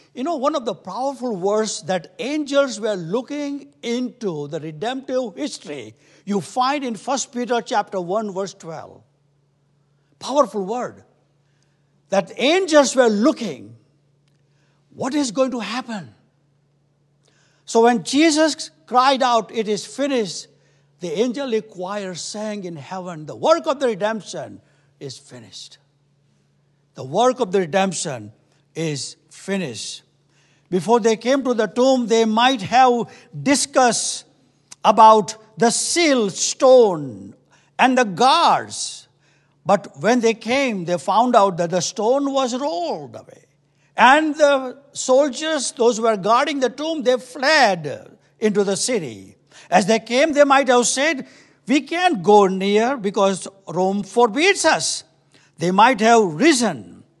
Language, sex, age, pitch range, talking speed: English, male, 60-79, 155-255 Hz, 130 wpm